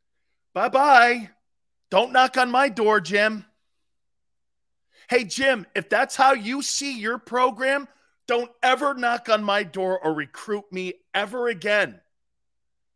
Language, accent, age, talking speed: English, American, 40-59, 125 wpm